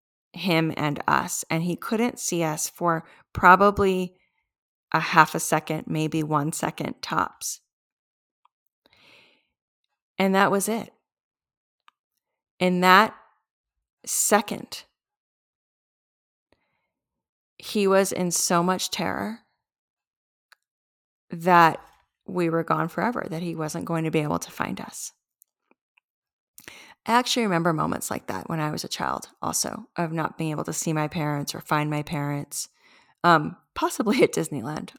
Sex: female